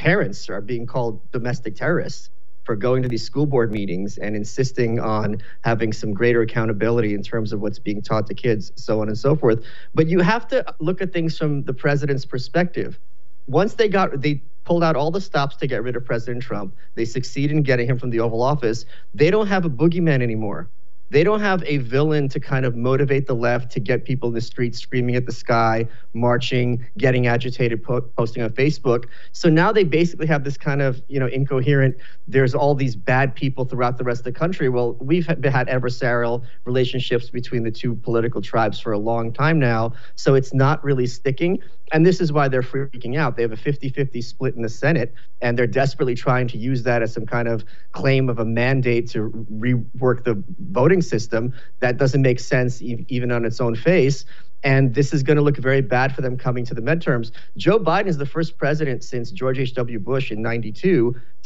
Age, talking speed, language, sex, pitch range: 30-49, 210 wpm, English, male, 120-145 Hz